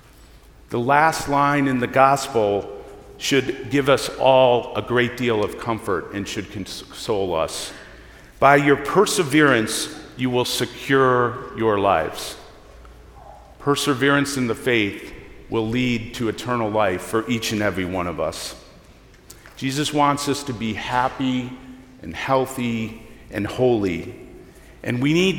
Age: 50-69